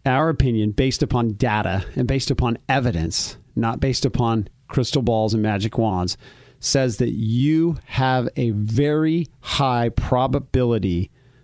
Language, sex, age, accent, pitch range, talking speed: English, male, 40-59, American, 115-135 Hz, 130 wpm